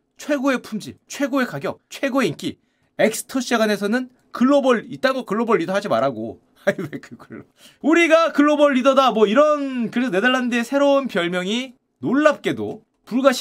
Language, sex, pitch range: Korean, male, 160-250 Hz